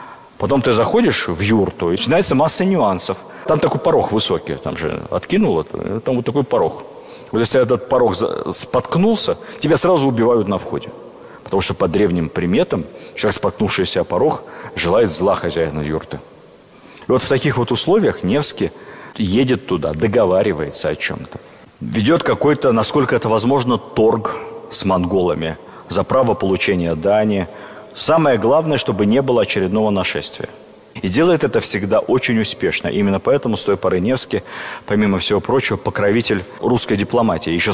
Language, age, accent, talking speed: Russian, 40-59, native, 145 wpm